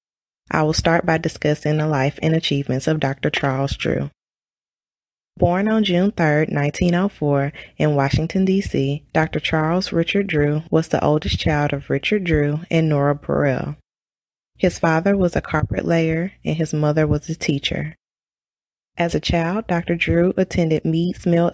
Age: 20-39